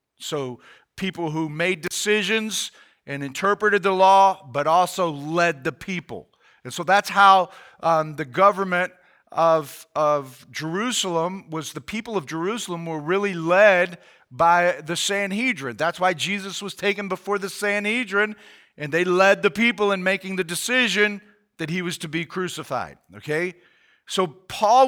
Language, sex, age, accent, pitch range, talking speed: English, male, 40-59, American, 160-205 Hz, 145 wpm